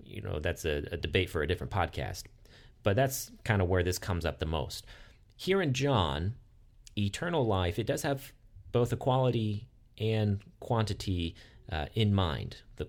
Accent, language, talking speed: American, English, 170 wpm